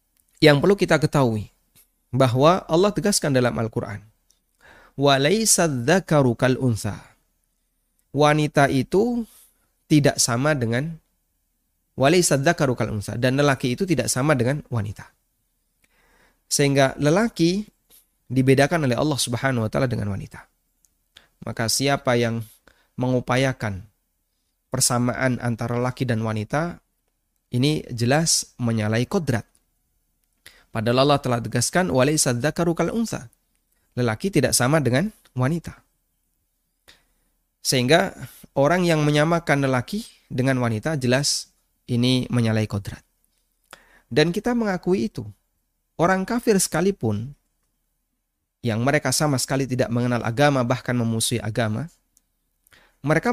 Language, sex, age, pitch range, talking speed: Indonesian, male, 30-49, 115-150 Hz, 95 wpm